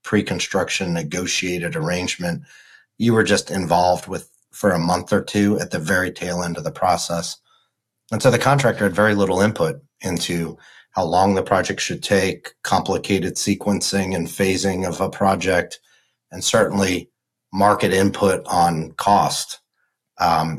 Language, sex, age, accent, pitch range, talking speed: English, male, 40-59, American, 90-105 Hz, 145 wpm